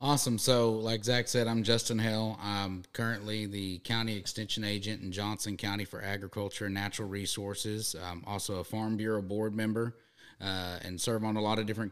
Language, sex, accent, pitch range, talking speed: English, male, American, 100-120 Hz, 185 wpm